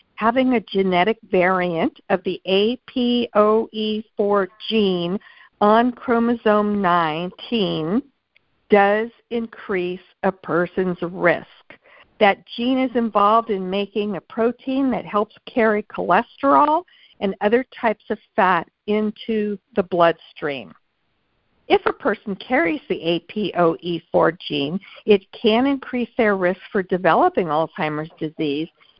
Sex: female